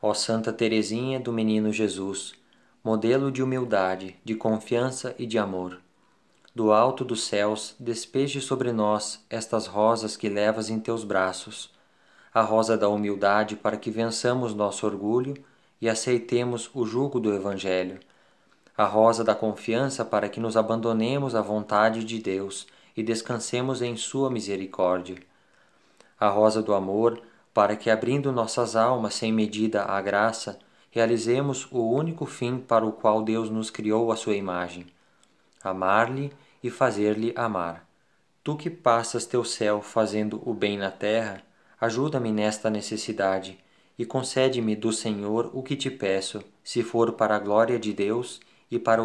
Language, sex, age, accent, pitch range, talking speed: Portuguese, male, 20-39, Brazilian, 105-120 Hz, 145 wpm